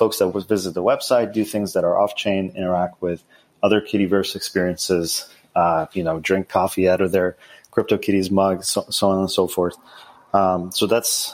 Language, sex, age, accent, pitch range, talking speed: English, male, 30-49, Canadian, 95-110 Hz, 195 wpm